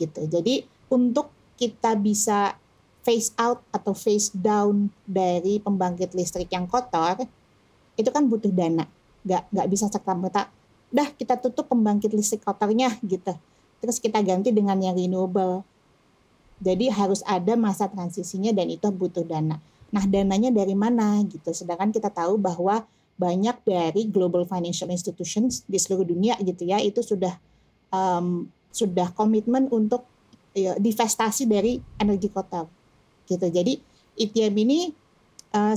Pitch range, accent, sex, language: 190-235 Hz, native, female, Indonesian